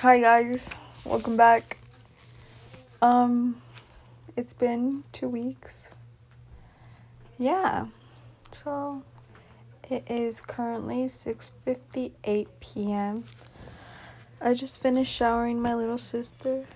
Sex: female